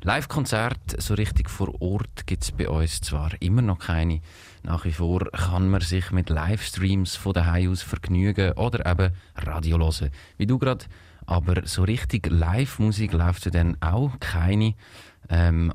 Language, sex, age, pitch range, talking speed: German, male, 30-49, 85-100 Hz, 160 wpm